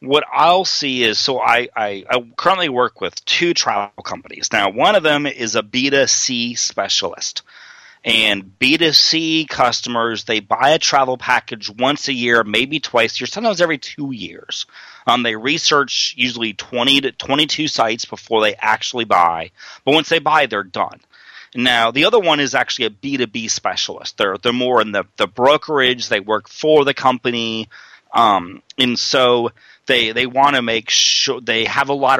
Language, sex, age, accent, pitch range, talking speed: English, male, 30-49, American, 115-145 Hz, 175 wpm